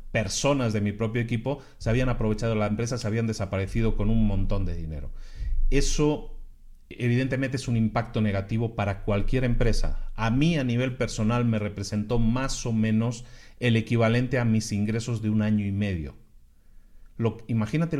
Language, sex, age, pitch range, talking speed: Spanish, male, 40-59, 100-125 Hz, 160 wpm